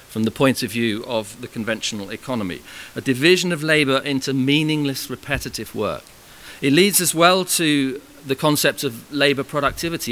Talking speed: 160 wpm